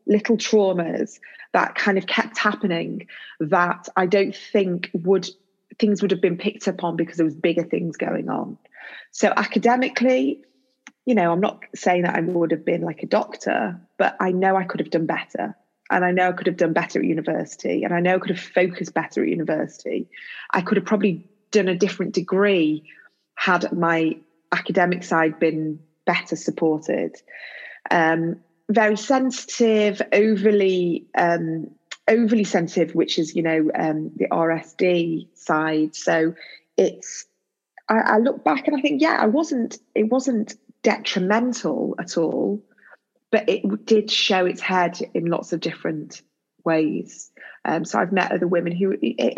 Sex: female